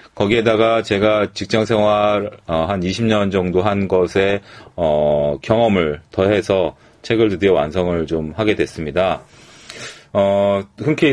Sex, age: male, 30-49